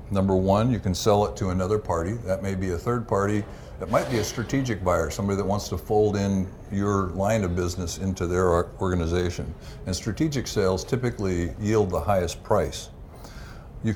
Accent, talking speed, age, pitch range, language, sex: American, 185 wpm, 60-79, 85-105 Hz, English, male